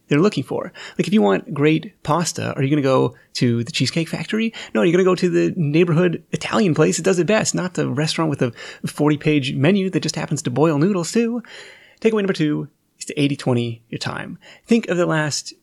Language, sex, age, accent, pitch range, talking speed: English, male, 30-49, American, 130-175 Hz, 225 wpm